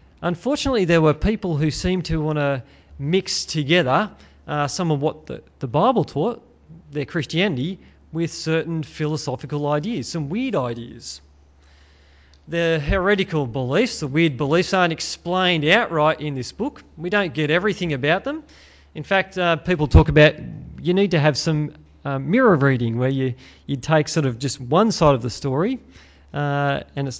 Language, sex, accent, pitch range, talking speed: English, male, Australian, 125-170 Hz, 165 wpm